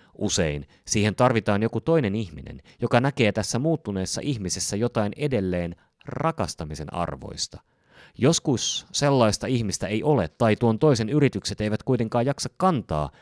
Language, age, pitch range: Finnish, 30-49, 90-135 Hz